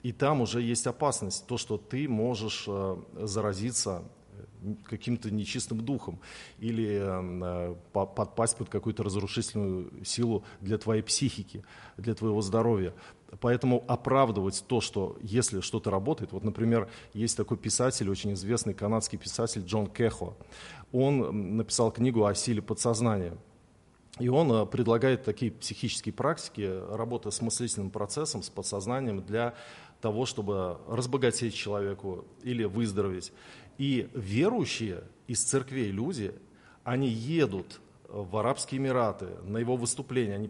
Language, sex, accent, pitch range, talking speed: Russian, male, native, 105-120 Hz, 120 wpm